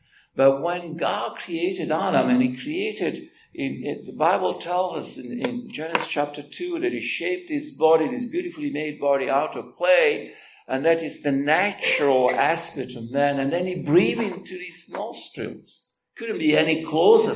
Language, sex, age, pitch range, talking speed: English, male, 60-79, 150-235 Hz, 175 wpm